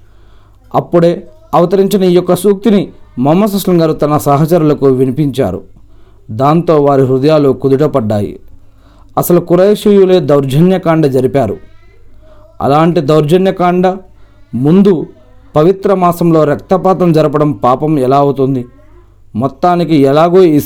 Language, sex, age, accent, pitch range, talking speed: Telugu, male, 40-59, native, 110-170 Hz, 95 wpm